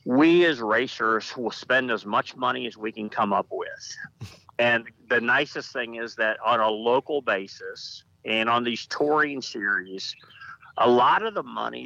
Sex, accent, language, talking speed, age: male, American, English, 170 wpm, 50-69